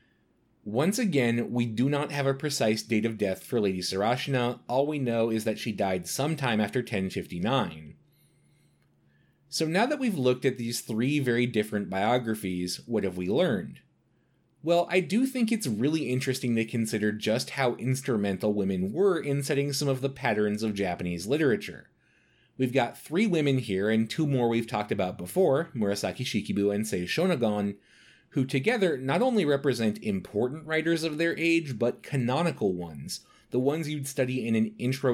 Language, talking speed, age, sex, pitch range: English, 170 wpm, 30-49, male, 105-140 Hz